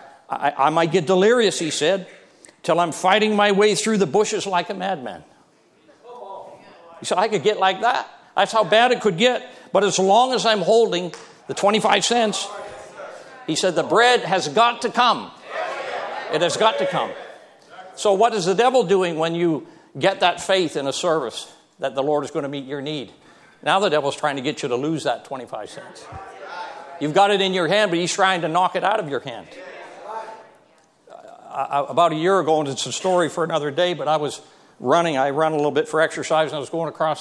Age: 60-79